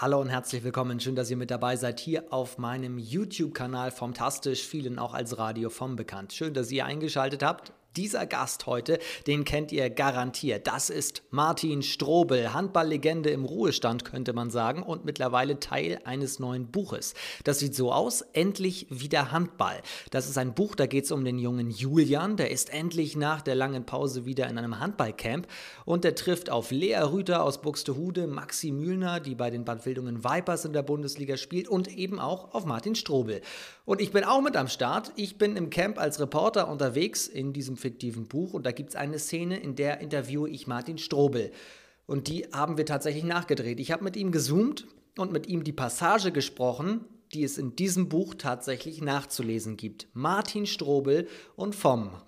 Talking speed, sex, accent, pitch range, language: 190 wpm, male, German, 125-170 Hz, German